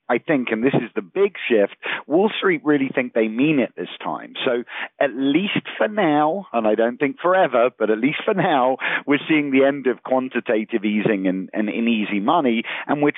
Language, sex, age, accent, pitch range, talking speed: English, male, 40-59, British, 110-150 Hz, 205 wpm